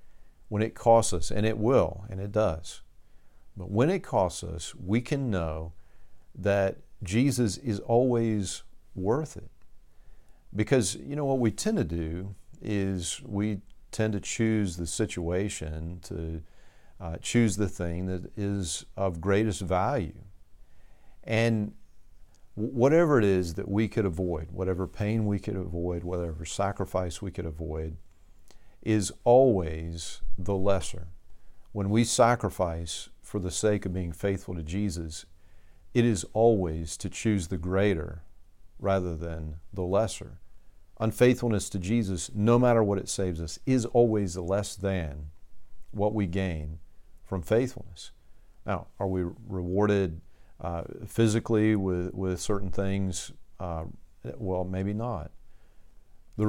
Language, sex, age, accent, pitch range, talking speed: English, male, 50-69, American, 85-110 Hz, 135 wpm